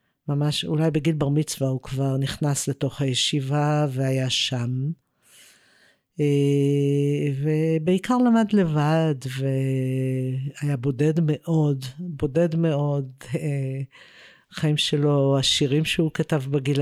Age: 60-79